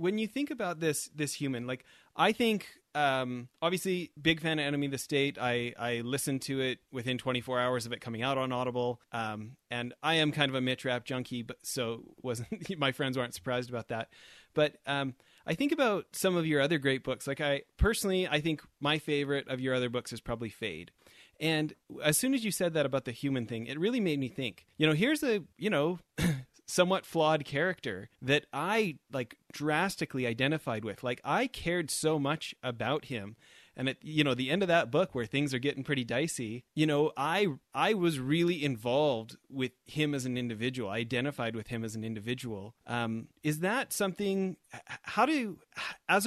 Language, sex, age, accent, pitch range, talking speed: English, male, 30-49, American, 125-160 Hz, 200 wpm